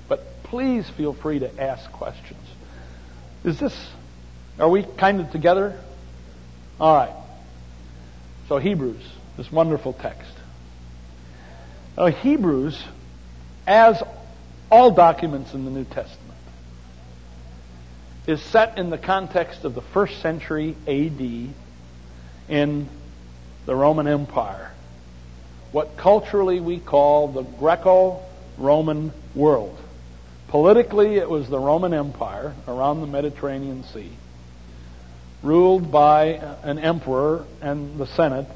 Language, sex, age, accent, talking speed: English, male, 60-79, American, 105 wpm